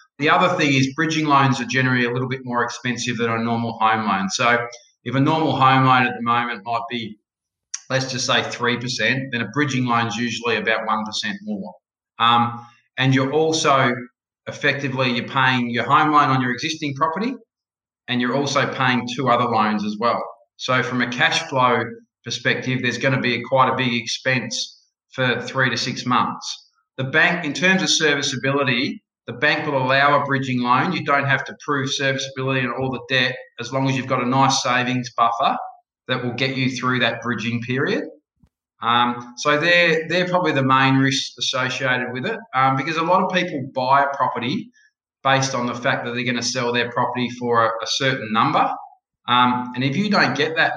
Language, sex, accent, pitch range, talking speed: English, male, Australian, 120-145 Hz, 200 wpm